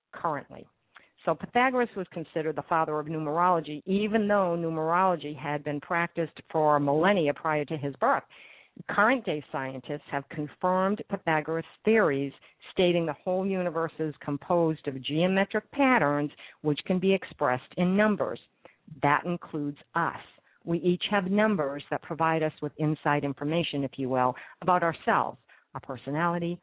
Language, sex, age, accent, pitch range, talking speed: English, female, 50-69, American, 150-190 Hz, 140 wpm